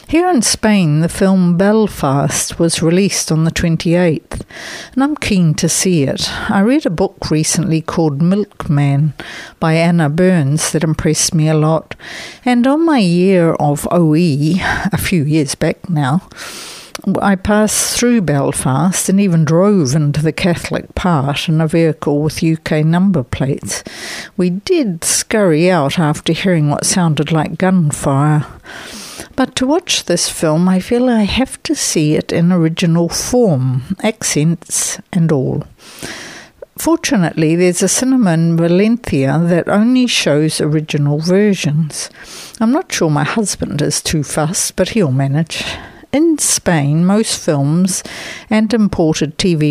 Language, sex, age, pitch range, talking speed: English, female, 60-79, 155-200 Hz, 140 wpm